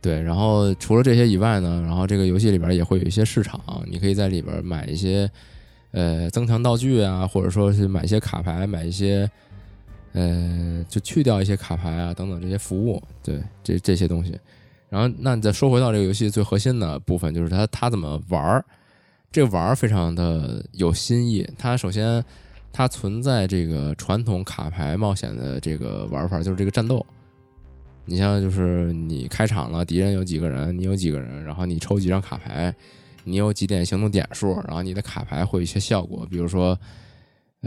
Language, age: Chinese, 20-39